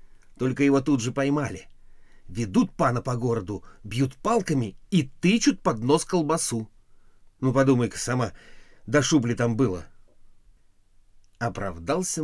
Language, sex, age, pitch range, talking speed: Russian, male, 50-69, 95-155 Hz, 120 wpm